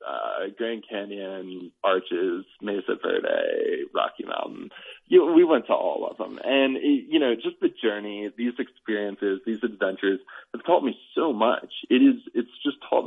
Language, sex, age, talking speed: English, male, 20-39, 165 wpm